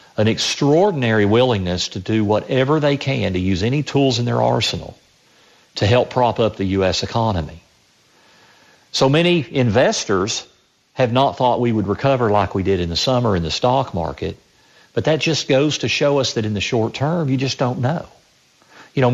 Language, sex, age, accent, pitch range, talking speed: English, male, 50-69, American, 100-130 Hz, 185 wpm